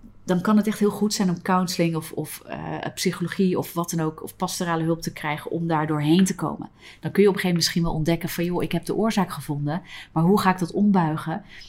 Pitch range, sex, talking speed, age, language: 150-185 Hz, female, 255 wpm, 30-49, Dutch